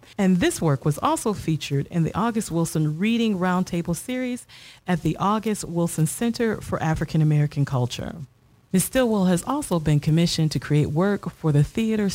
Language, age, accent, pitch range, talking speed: English, 40-59, American, 150-200 Hz, 165 wpm